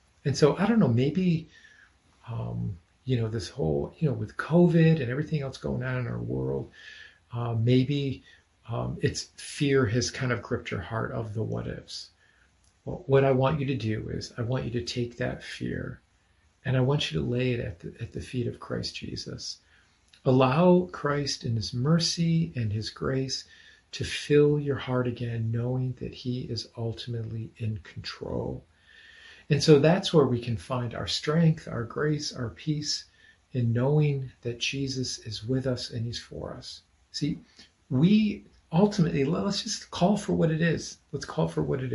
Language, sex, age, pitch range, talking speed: English, male, 40-59, 110-145 Hz, 175 wpm